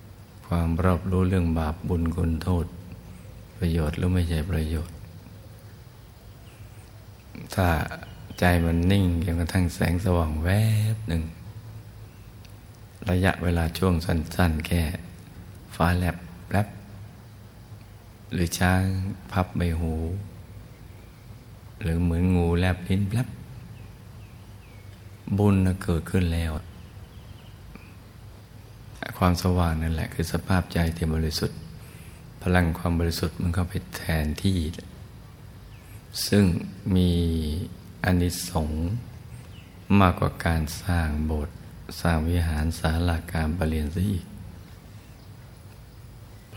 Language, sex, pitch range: Thai, male, 85-105 Hz